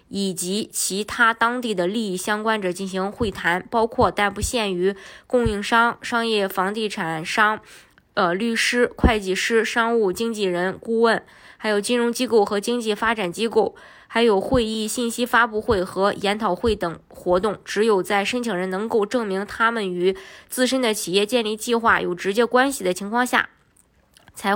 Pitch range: 195-235 Hz